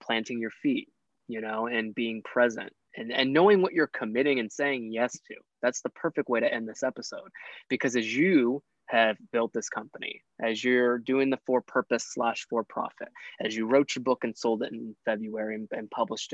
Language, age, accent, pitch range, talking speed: English, 20-39, American, 110-130 Hz, 200 wpm